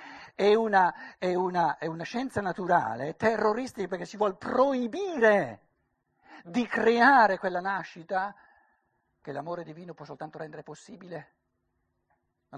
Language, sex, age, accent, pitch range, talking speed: Italian, male, 60-79, native, 160-225 Hz, 125 wpm